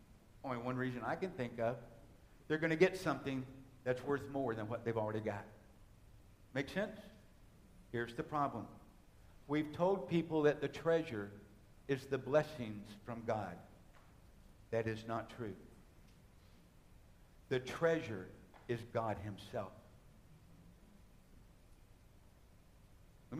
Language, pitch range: English, 105-165 Hz